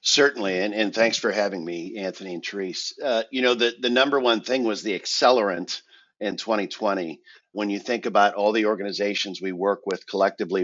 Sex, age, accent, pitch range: male, 50-69, American, 95-115 Hz